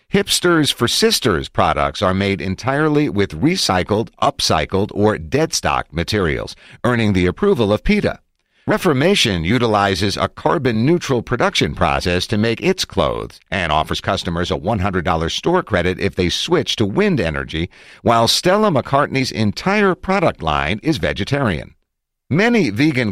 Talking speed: 130 wpm